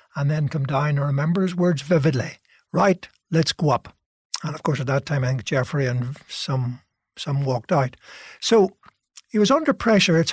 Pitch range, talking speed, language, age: 140-180 Hz, 190 wpm, English, 60-79